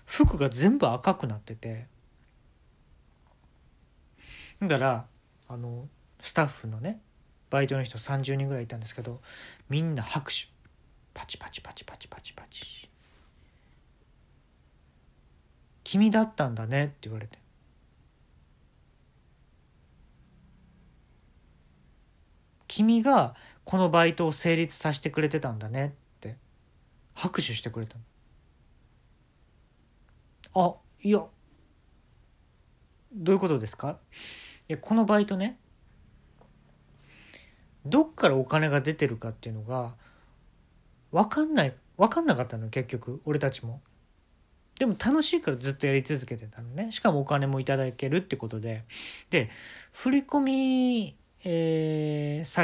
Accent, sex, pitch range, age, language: native, male, 110-170 Hz, 40-59, Japanese